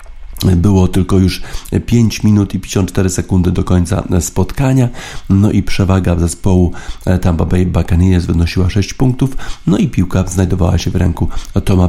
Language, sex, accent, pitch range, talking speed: Polish, male, native, 90-105 Hz, 150 wpm